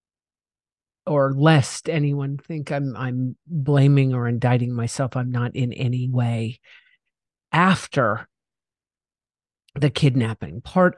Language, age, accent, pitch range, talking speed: English, 50-69, American, 120-140 Hz, 105 wpm